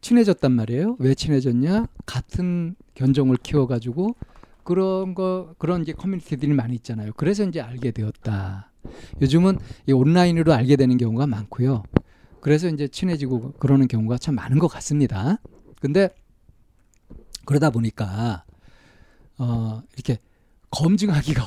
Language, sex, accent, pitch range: Korean, male, native, 120-165 Hz